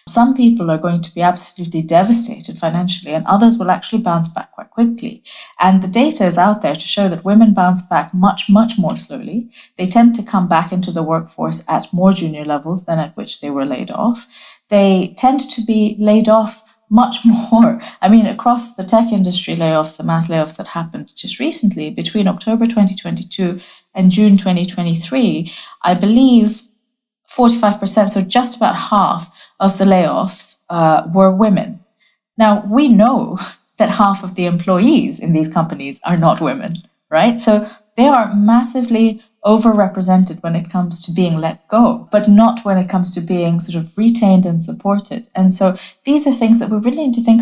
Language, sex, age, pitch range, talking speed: English, female, 30-49, 180-225 Hz, 180 wpm